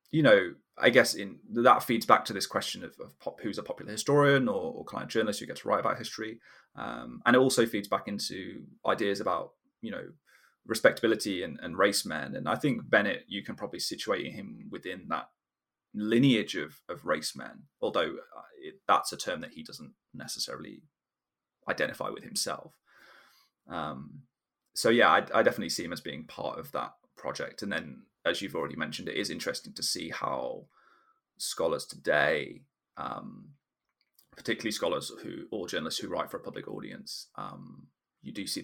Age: 20-39